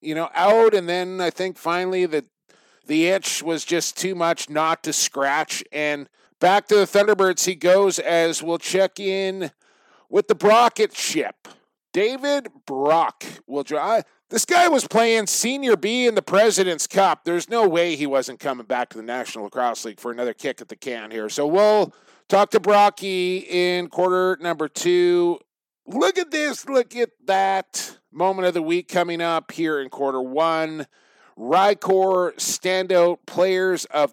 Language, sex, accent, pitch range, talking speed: English, male, American, 155-190 Hz, 165 wpm